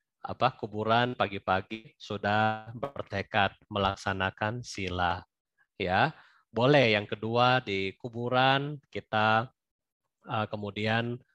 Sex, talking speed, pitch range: male, 80 wpm, 95-120 Hz